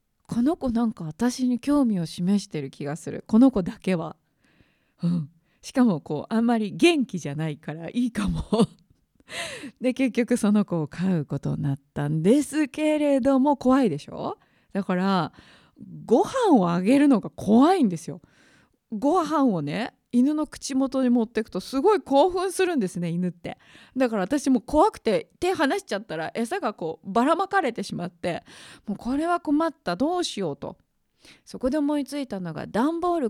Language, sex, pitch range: Japanese, female, 175-275 Hz